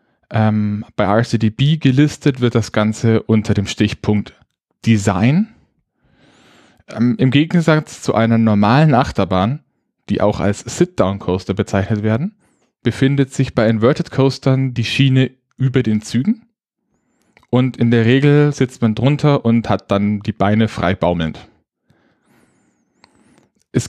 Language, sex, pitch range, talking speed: German, male, 105-135 Hz, 120 wpm